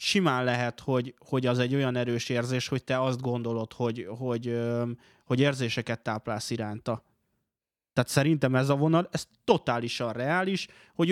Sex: male